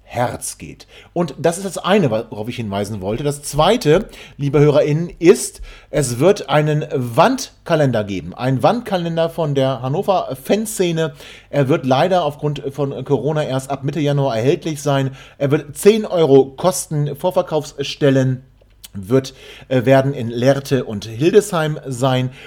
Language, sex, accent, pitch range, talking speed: German, male, German, 130-160 Hz, 140 wpm